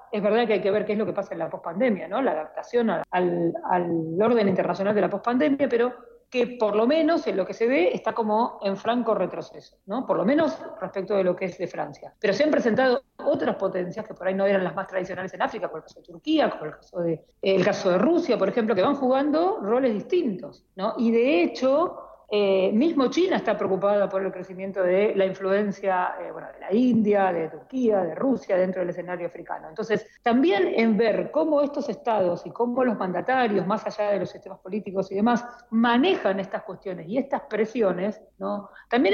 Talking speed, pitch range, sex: 215 wpm, 190-245 Hz, female